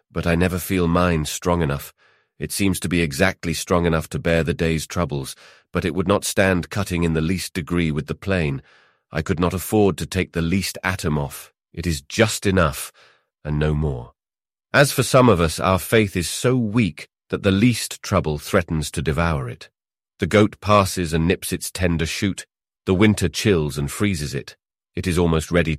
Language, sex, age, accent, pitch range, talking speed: English, male, 30-49, British, 80-105 Hz, 200 wpm